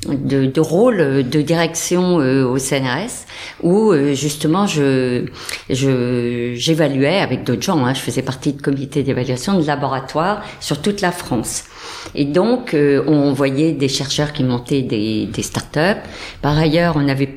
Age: 50-69